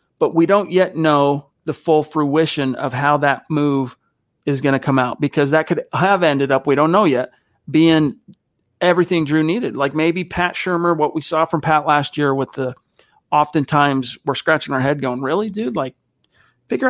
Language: English